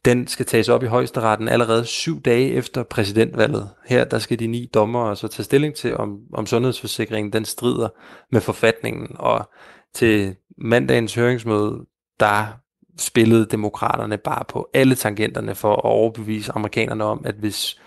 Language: Danish